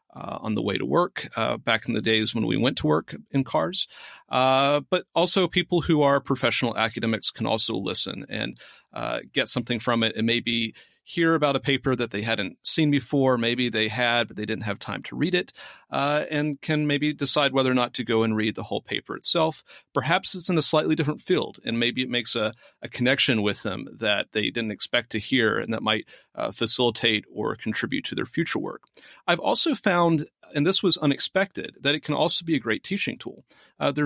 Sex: male